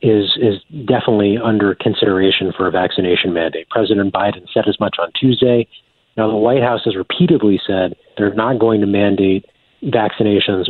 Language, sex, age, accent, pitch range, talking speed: English, male, 40-59, American, 100-120 Hz, 165 wpm